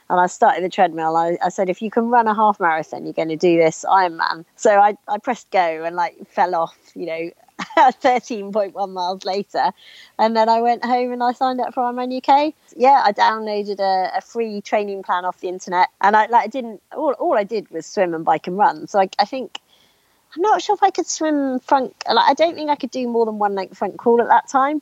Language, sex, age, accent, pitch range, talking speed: English, female, 30-49, British, 180-245 Hz, 245 wpm